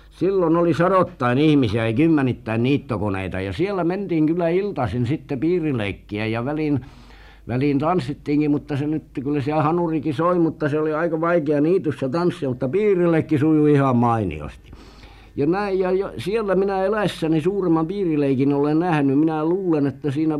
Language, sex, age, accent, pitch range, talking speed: Finnish, male, 60-79, native, 110-155 Hz, 150 wpm